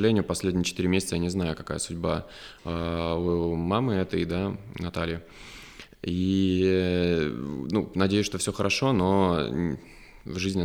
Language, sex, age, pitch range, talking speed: Russian, male, 20-39, 85-95 Hz, 125 wpm